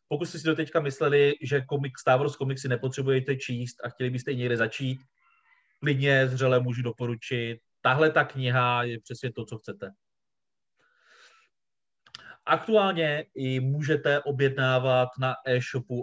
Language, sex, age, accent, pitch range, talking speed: Czech, male, 30-49, native, 120-145 Hz, 130 wpm